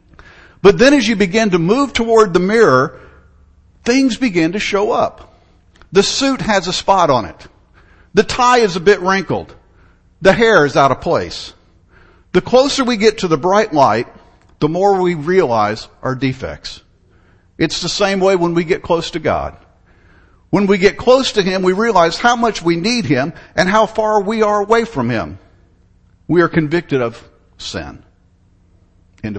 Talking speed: 175 wpm